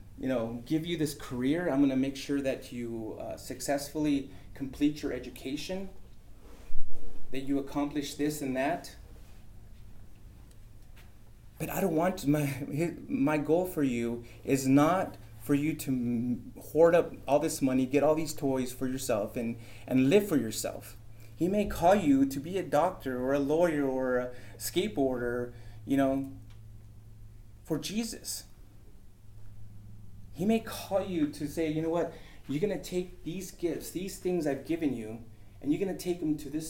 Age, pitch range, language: 30-49, 115-160 Hz, English